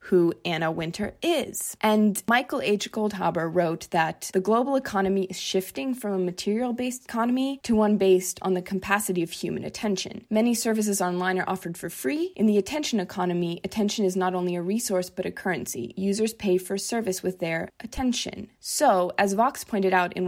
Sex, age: female, 20-39